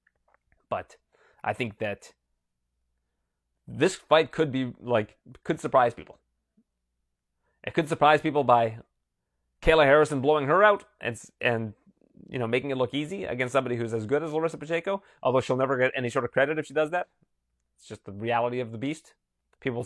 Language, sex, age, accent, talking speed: English, male, 30-49, American, 175 wpm